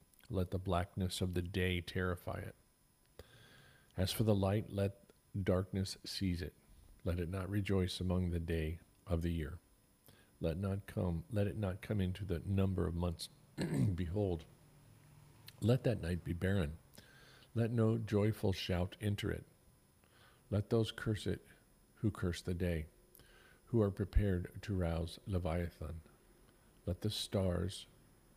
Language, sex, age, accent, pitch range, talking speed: English, male, 50-69, American, 85-105 Hz, 140 wpm